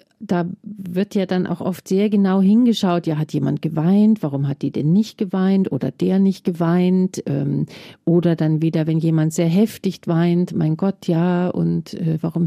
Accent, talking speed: German, 175 wpm